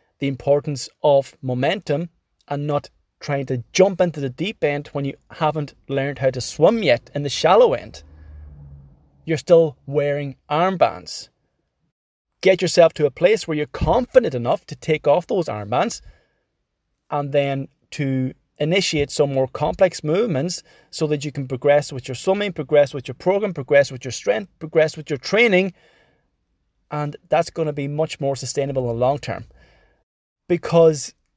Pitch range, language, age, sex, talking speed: 135-165 Hz, English, 30-49, male, 160 wpm